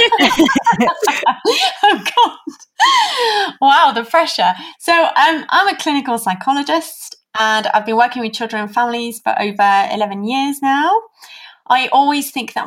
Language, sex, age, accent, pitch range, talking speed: English, female, 20-39, British, 190-250 Hz, 135 wpm